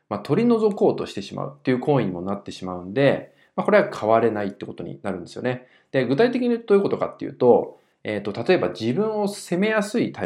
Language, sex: Japanese, male